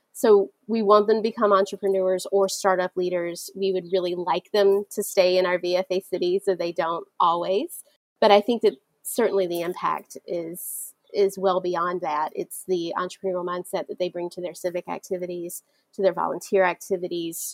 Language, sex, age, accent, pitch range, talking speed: English, female, 30-49, American, 175-200 Hz, 180 wpm